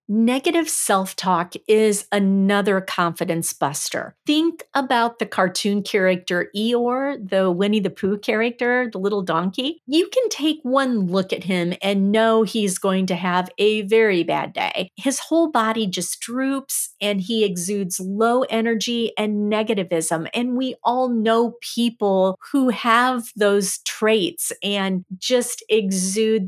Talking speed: 140 wpm